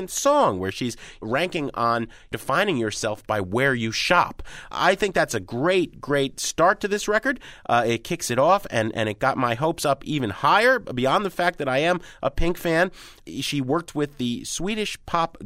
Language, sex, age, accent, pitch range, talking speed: English, male, 30-49, American, 115-165 Hz, 195 wpm